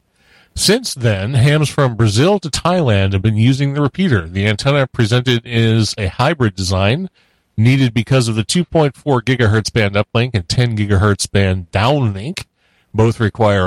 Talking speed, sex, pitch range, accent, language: 150 wpm, male, 100-130 Hz, American, English